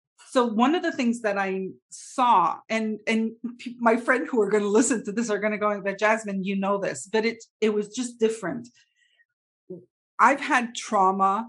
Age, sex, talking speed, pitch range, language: 40-59, female, 195 wpm, 180-225 Hz, English